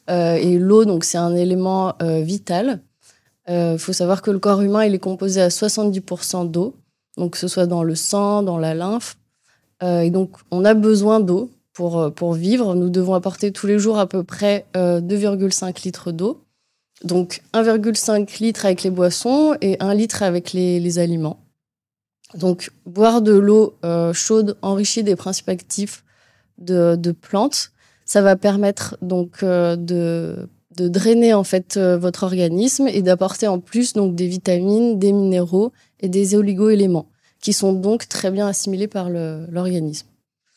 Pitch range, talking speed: 180-210 Hz, 170 wpm